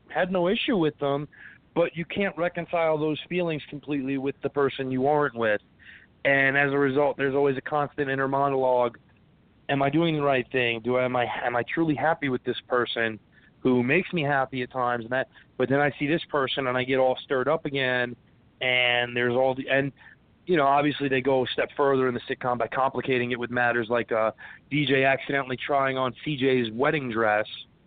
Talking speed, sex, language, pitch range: 205 wpm, male, English, 125-150 Hz